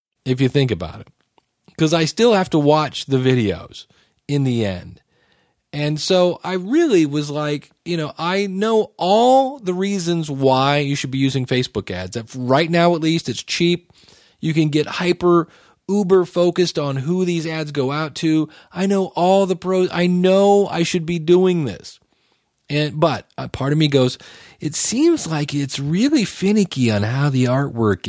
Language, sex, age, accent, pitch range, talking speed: English, male, 40-59, American, 130-185 Hz, 175 wpm